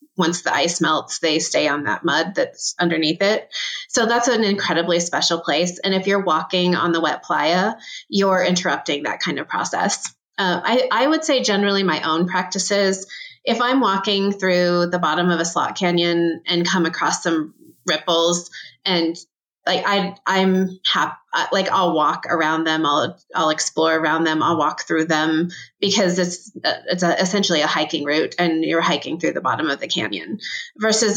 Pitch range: 165-195 Hz